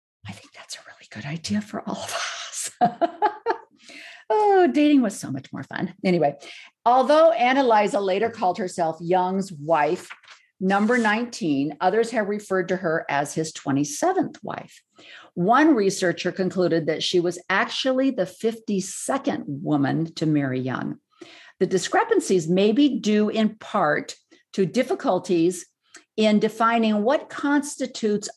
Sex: female